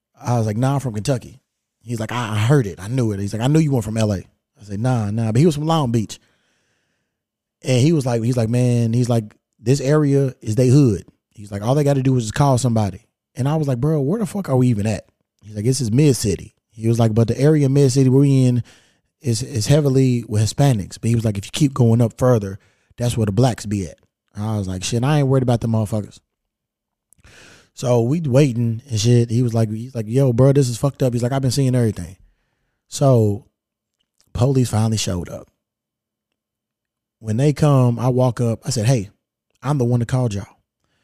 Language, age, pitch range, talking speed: English, 20-39, 110-135 Hz, 230 wpm